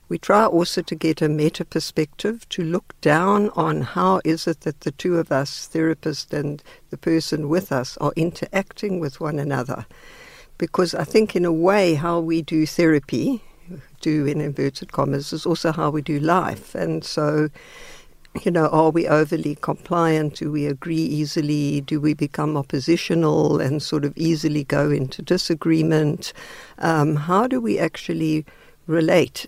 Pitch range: 150-185 Hz